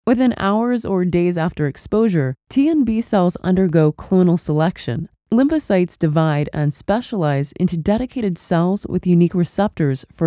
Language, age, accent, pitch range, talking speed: English, 20-39, American, 160-215 Hz, 140 wpm